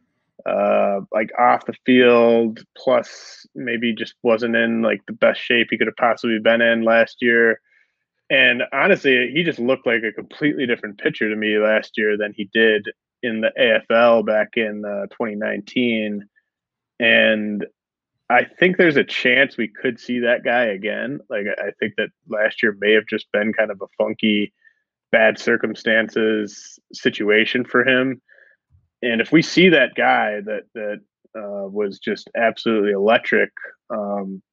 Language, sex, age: English, male, 20-39